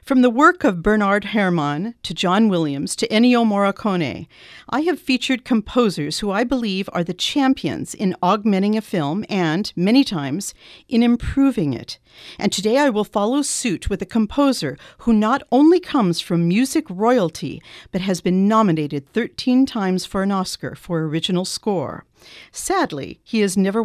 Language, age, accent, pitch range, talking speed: English, 50-69, American, 180-245 Hz, 160 wpm